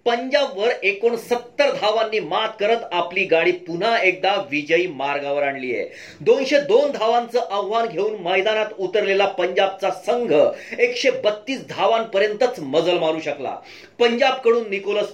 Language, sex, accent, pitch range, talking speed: Marathi, male, native, 195-245 Hz, 85 wpm